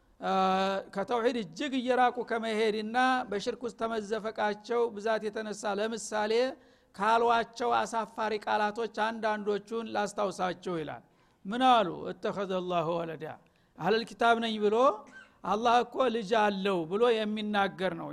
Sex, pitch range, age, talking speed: male, 200-245 Hz, 60-79, 100 wpm